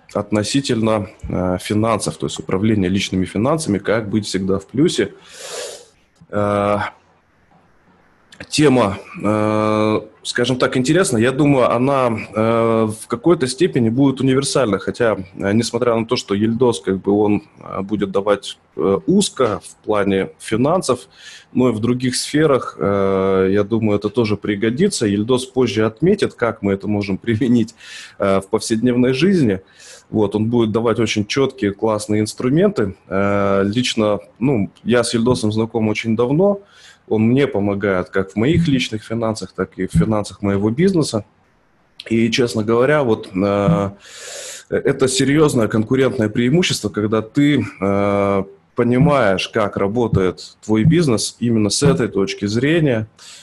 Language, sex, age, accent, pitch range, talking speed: Russian, male, 20-39, native, 100-125 Hz, 120 wpm